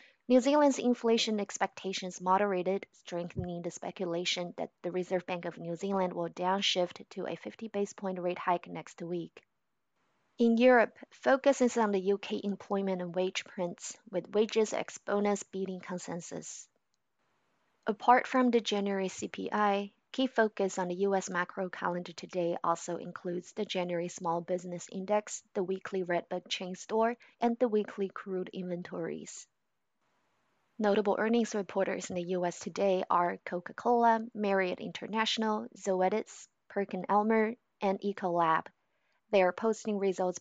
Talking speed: 135 wpm